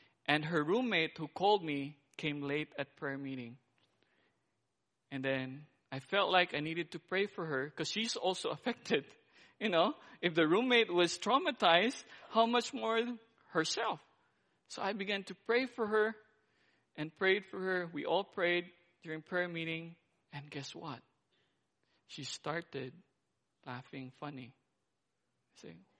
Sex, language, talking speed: male, English, 145 wpm